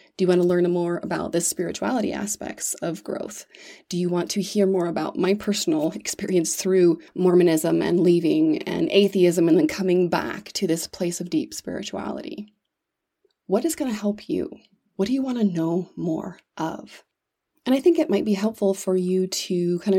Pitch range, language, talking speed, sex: 175-210 Hz, English, 190 wpm, female